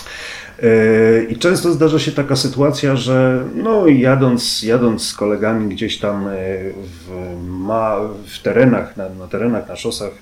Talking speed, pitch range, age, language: 130 wpm, 100-120 Hz, 30-49, Polish